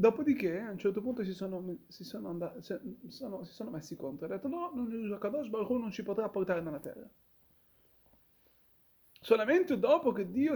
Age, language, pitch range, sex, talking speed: 30-49, Italian, 165-245 Hz, male, 195 wpm